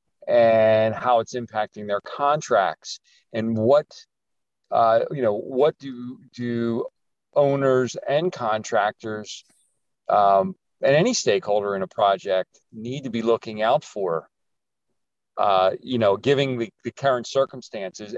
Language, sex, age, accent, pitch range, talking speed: English, male, 40-59, American, 110-135 Hz, 125 wpm